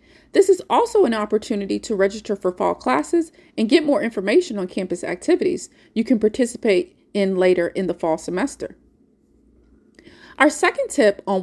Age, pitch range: 30-49, 195-285 Hz